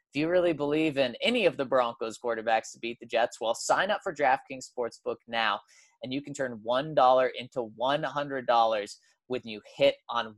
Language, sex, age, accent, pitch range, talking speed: English, male, 20-39, American, 125-180 Hz, 185 wpm